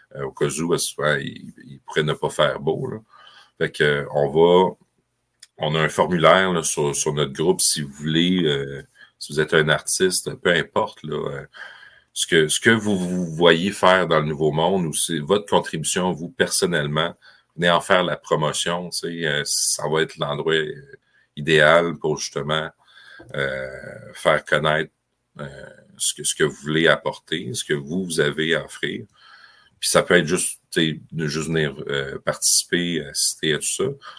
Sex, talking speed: male, 175 wpm